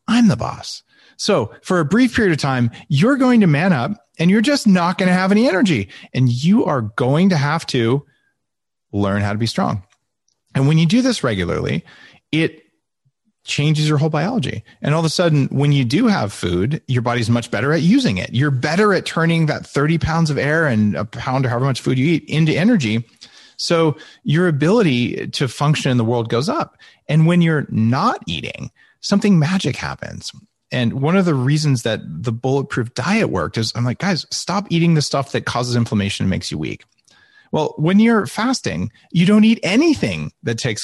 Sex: male